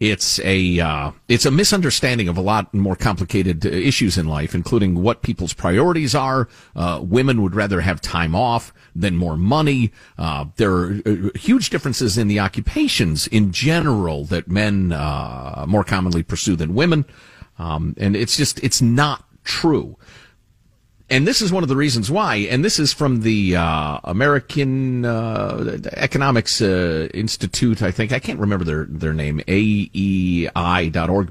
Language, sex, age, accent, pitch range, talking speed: English, male, 40-59, American, 95-140 Hz, 155 wpm